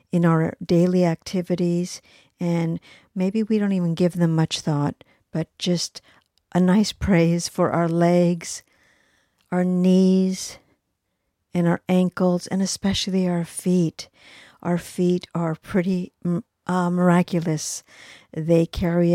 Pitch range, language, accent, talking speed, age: 165-185 Hz, English, American, 120 wpm, 50-69